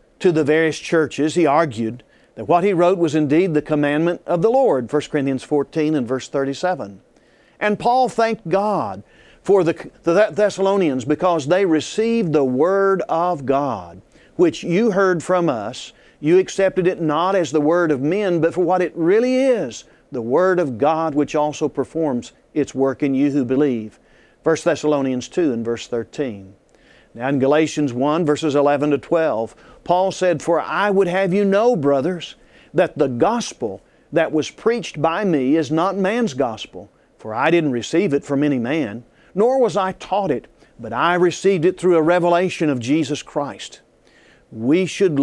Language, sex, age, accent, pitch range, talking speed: English, male, 50-69, American, 140-180 Hz, 170 wpm